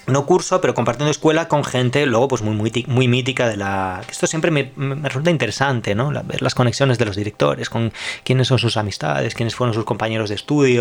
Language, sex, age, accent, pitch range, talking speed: Spanish, male, 20-39, Spanish, 105-135 Hz, 220 wpm